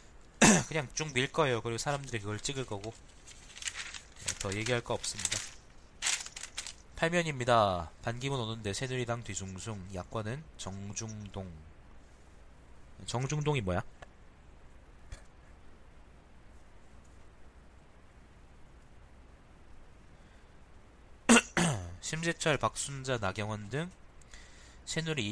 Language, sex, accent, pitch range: Korean, male, native, 85-120 Hz